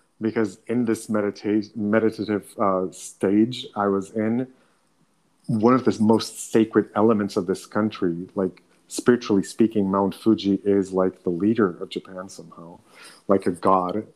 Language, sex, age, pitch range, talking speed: English, male, 30-49, 100-120 Hz, 145 wpm